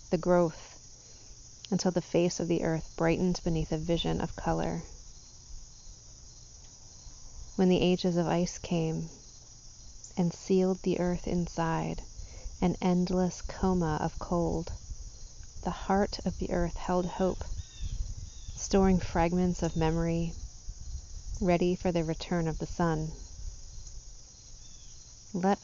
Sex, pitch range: female, 125-185 Hz